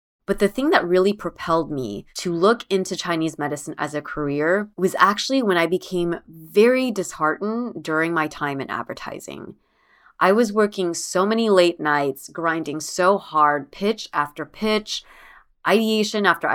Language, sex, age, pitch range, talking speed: English, female, 20-39, 155-195 Hz, 150 wpm